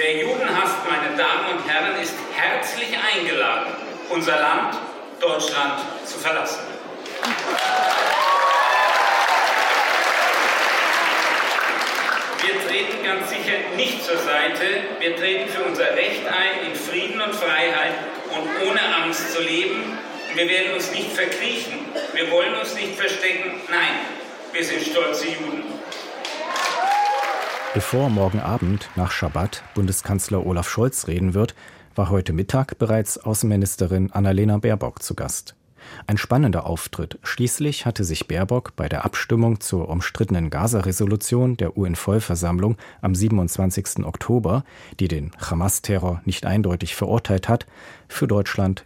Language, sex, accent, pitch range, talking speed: German, male, German, 95-140 Hz, 120 wpm